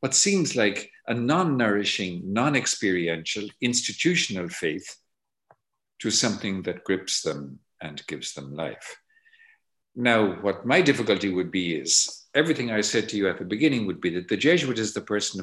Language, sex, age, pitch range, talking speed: Finnish, male, 50-69, 90-145 Hz, 155 wpm